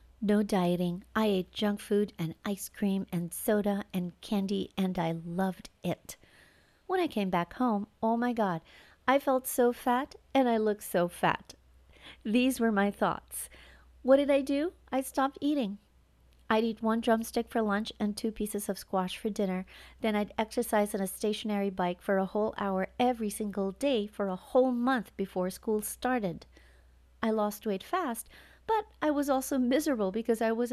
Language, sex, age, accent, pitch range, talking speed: English, female, 40-59, American, 195-245 Hz, 180 wpm